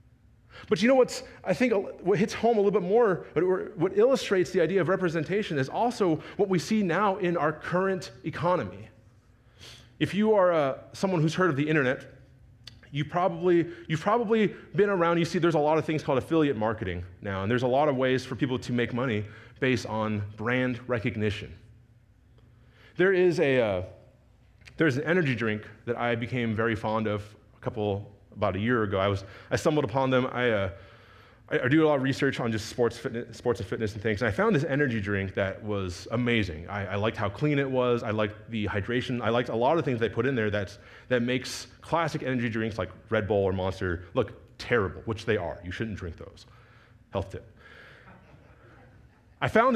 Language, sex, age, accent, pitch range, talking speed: English, male, 30-49, American, 110-155 Hz, 205 wpm